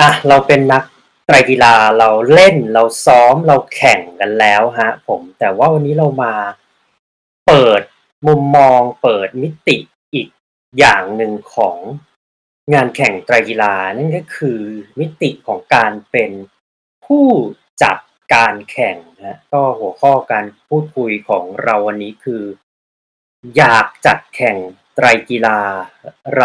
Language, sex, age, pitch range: Thai, male, 20-39, 105-145 Hz